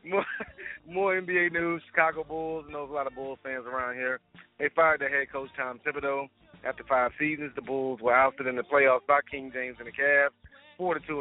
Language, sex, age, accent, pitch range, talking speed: English, male, 30-49, American, 130-150 Hz, 210 wpm